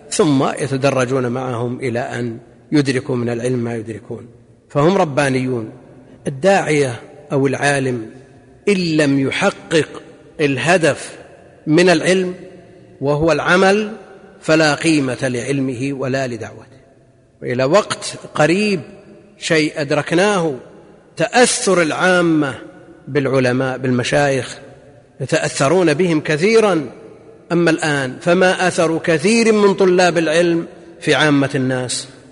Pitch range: 135-180 Hz